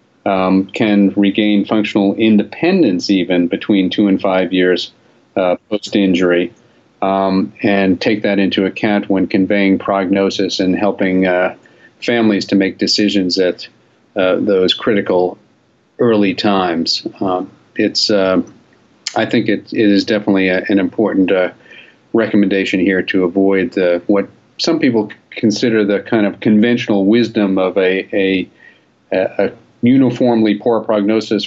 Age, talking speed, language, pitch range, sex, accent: 40-59, 125 wpm, English, 95-110 Hz, male, American